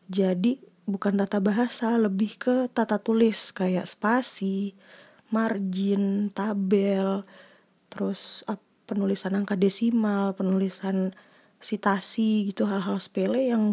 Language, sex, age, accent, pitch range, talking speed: Indonesian, female, 20-39, native, 195-230 Hz, 95 wpm